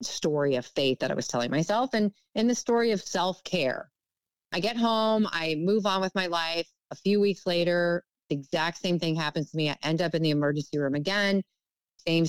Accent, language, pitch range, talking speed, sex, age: American, English, 150-190 Hz, 210 wpm, female, 30-49